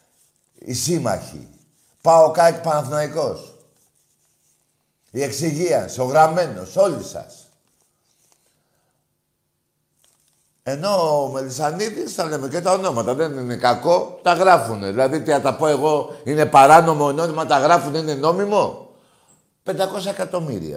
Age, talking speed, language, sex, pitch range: 60-79, 115 wpm, Greek, male, 110-165 Hz